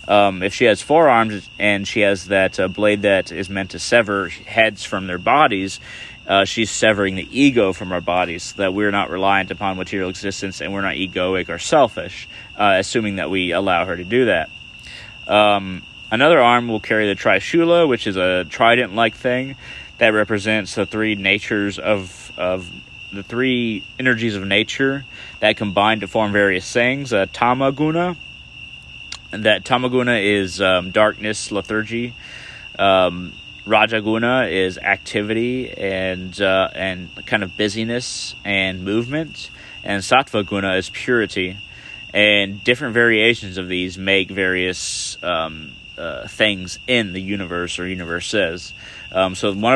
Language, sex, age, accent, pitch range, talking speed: English, male, 30-49, American, 95-115 Hz, 150 wpm